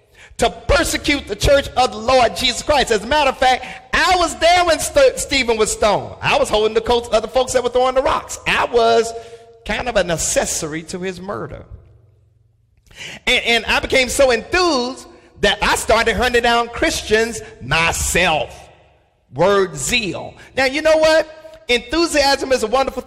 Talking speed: 175 wpm